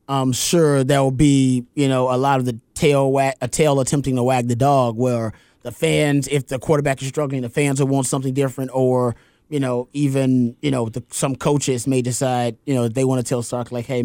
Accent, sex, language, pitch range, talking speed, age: American, male, English, 125-145 Hz, 220 wpm, 30-49